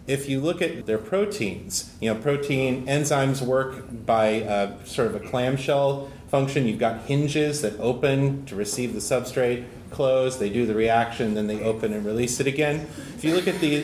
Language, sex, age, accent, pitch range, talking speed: English, male, 30-49, American, 110-140 Hz, 190 wpm